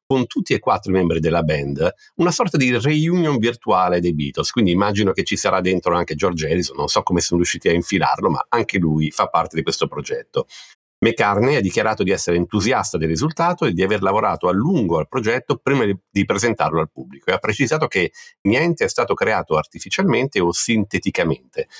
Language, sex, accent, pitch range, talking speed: Italian, male, native, 80-120 Hz, 195 wpm